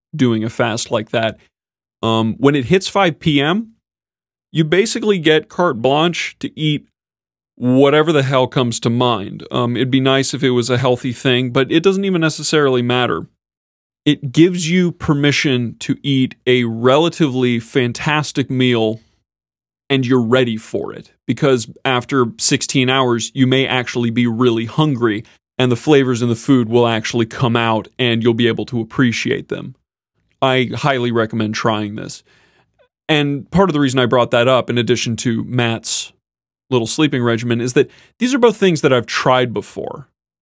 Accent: American